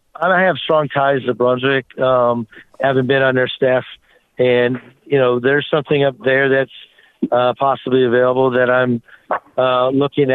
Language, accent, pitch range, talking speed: English, American, 125-145 Hz, 155 wpm